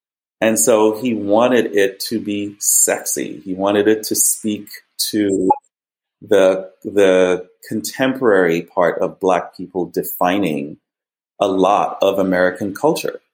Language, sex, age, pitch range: English, male, 30-49, 95-120 Hz